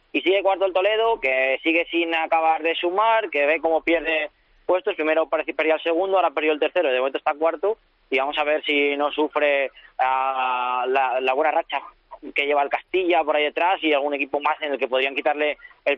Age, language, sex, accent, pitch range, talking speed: 20-39, Spanish, male, Spanish, 135-165 Hz, 220 wpm